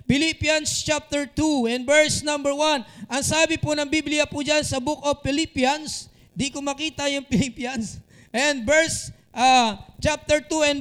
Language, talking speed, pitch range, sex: Filipino, 155 wpm, 190-295 Hz, male